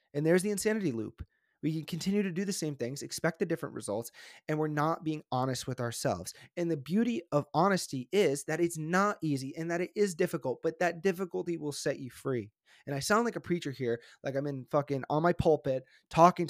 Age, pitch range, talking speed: 30-49, 135-175 Hz, 220 wpm